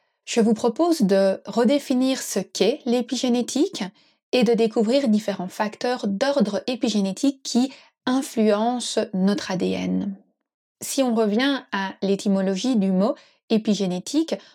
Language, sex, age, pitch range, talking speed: French, female, 20-39, 200-260 Hz, 110 wpm